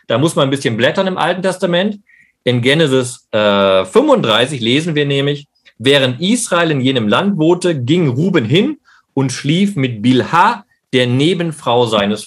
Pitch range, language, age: 125-175 Hz, German, 40-59